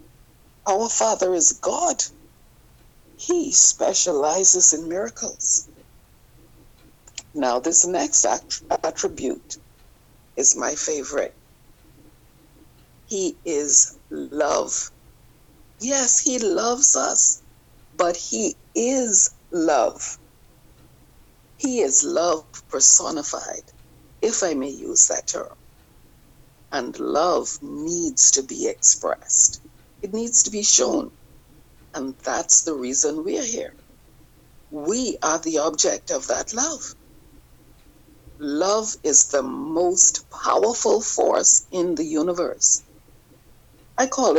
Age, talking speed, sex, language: 60-79, 95 wpm, female, English